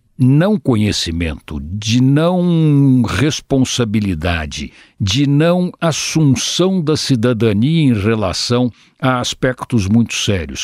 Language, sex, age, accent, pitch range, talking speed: Portuguese, male, 60-79, Brazilian, 110-160 Hz, 90 wpm